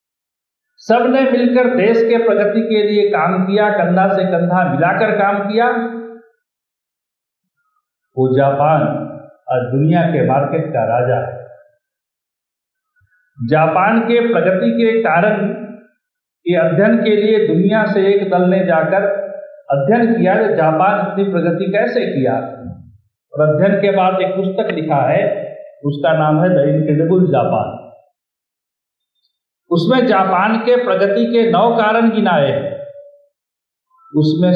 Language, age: Hindi, 50-69